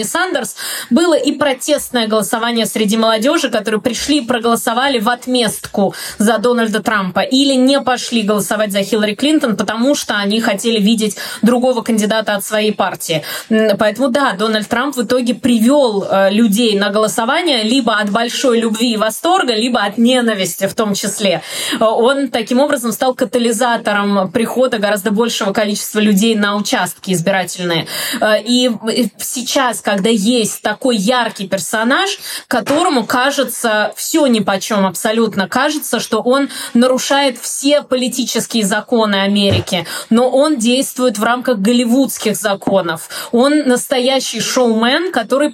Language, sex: Russian, female